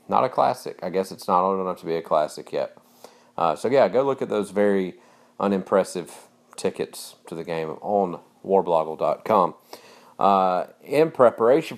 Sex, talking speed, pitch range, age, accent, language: male, 165 wpm, 90-100 Hz, 40-59, American, English